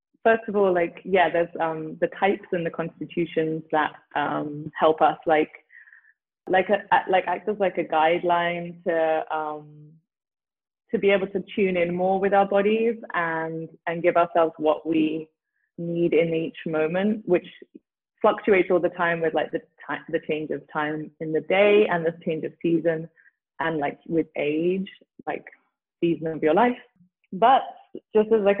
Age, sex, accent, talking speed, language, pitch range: 20-39, female, British, 170 wpm, English, 160-195 Hz